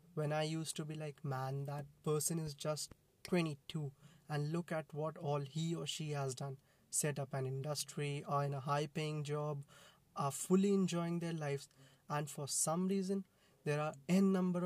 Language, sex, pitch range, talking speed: English, male, 140-170 Hz, 185 wpm